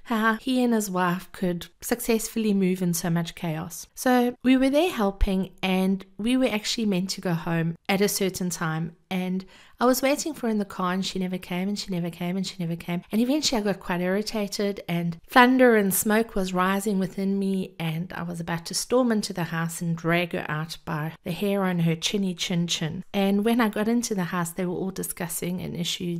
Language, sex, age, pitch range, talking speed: English, female, 40-59, 175-220 Hz, 225 wpm